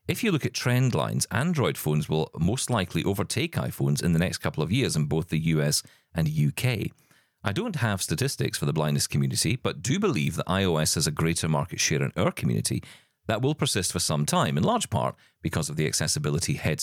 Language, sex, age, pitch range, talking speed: English, male, 40-59, 80-130 Hz, 215 wpm